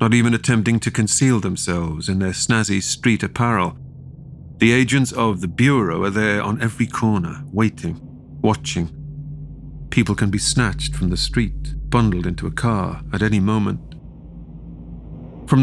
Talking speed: 145 wpm